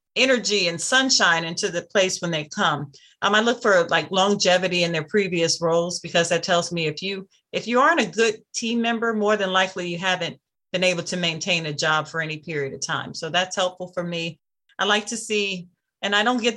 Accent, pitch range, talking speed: American, 170-205 Hz, 220 wpm